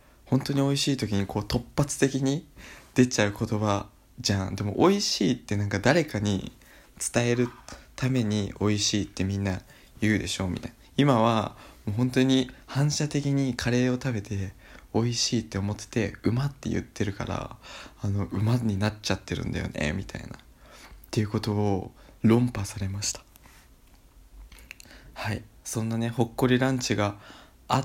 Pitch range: 100-125 Hz